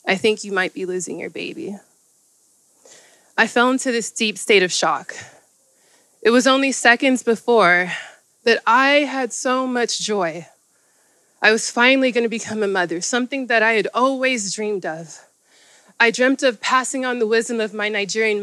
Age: 20-39